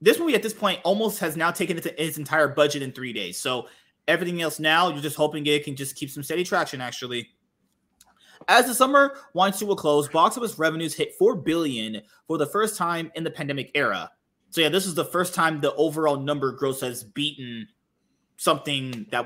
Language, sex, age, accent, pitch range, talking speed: English, male, 20-39, American, 140-185 Hz, 205 wpm